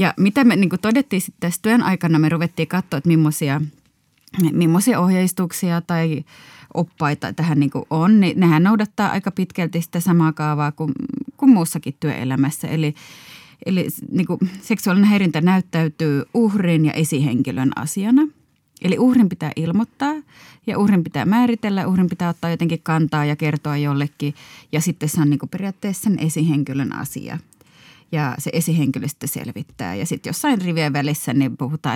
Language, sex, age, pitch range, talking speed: Finnish, female, 20-39, 145-185 Hz, 145 wpm